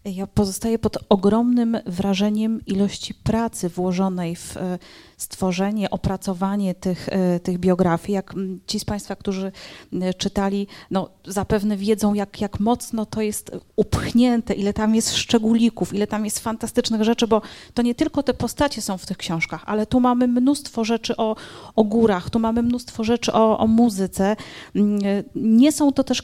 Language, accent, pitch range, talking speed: Polish, native, 190-225 Hz, 155 wpm